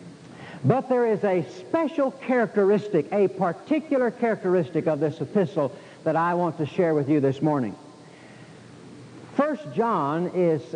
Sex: male